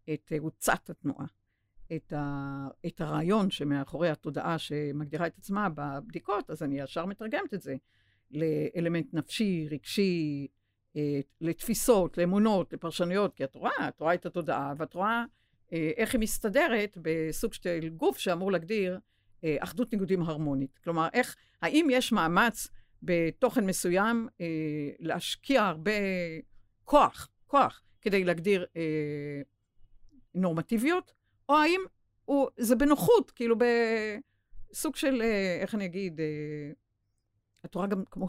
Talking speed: 125 wpm